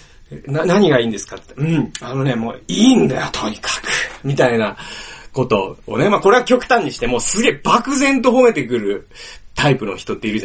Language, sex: Japanese, male